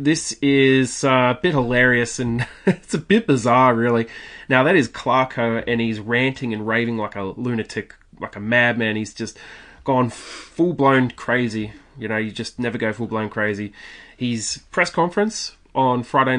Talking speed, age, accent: 165 wpm, 20-39, Australian